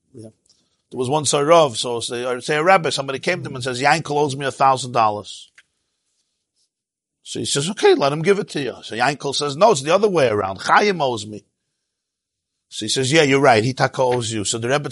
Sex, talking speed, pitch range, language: male, 225 wpm, 125-170 Hz, English